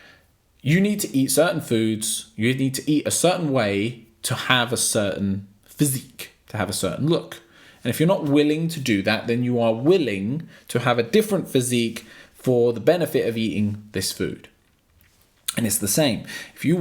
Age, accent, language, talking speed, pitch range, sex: 20-39, British, English, 190 wpm, 105-145 Hz, male